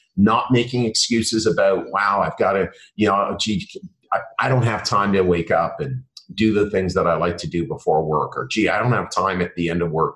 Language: English